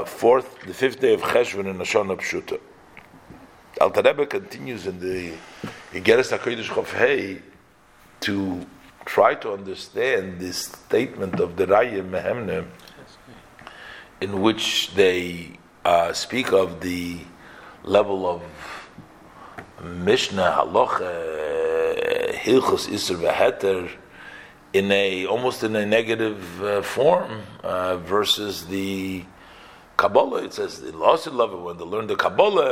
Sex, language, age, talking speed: male, English, 50-69, 110 wpm